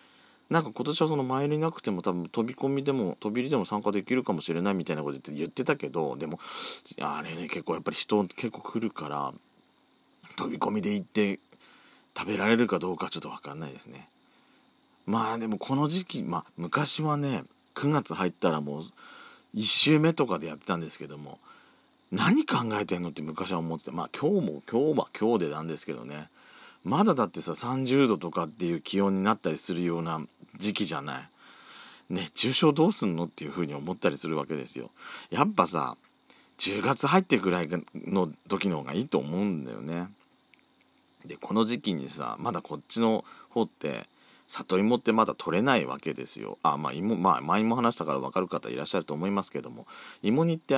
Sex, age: male, 40-59